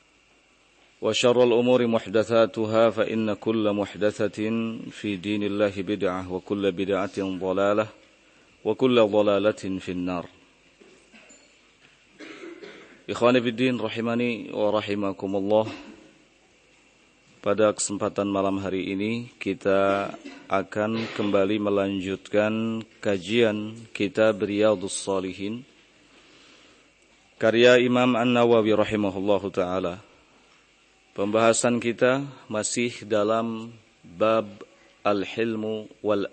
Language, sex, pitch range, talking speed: Indonesian, male, 100-115 Hz, 80 wpm